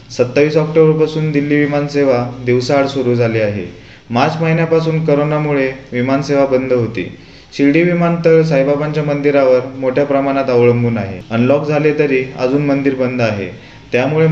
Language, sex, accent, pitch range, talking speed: Marathi, male, native, 125-150 Hz, 130 wpm